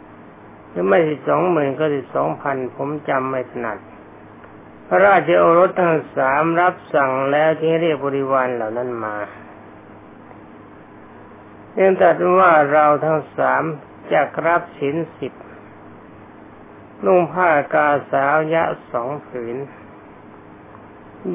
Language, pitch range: Thai, 125-165 Hz